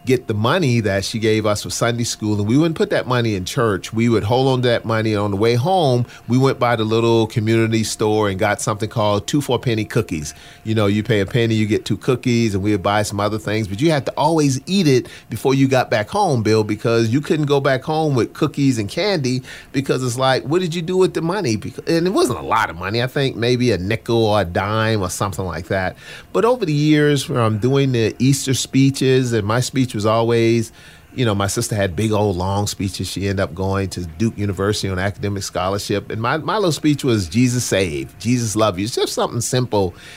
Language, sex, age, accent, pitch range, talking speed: English, male, 30-49, American, 100-130 Hz, 245 wpm